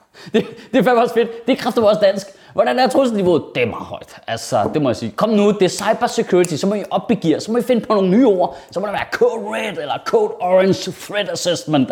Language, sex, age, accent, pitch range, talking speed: Danish, male, 30-49, native, 150-220 Hz, 250 wpm